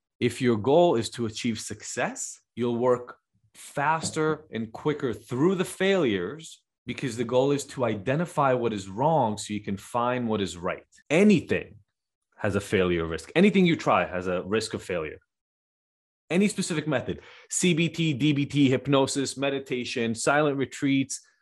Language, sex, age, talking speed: English, male, 30-49, 150 wpm